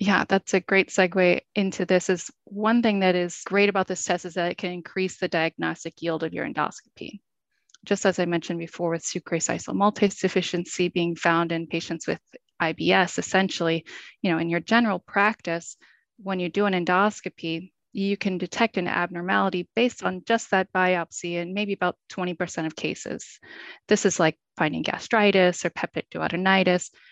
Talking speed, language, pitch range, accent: 175 wpm, English, 170-195 Hz, American